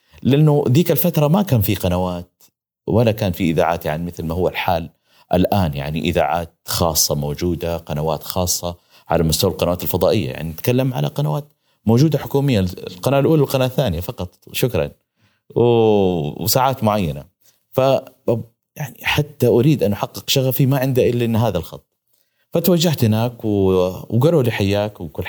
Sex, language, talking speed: male, Arabic, 145 wpm